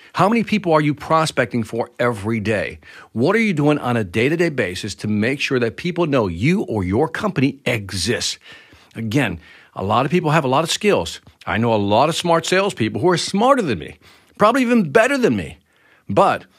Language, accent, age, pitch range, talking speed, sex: English, American, 50-69, 115-160 Hz, 205 wpm, male